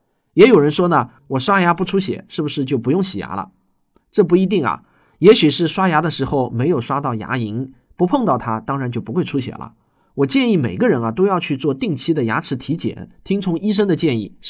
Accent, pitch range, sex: native, 115-170 Hz, male